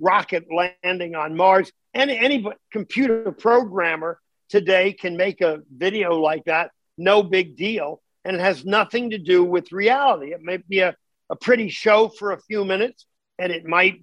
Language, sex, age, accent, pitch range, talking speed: English, male, 50-69, American, 180-220 Hz, 170 wpm